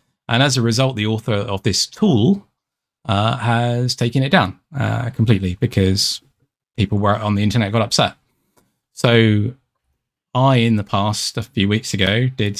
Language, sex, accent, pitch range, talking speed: English, male, British, 100-125 Hz, 160 wpm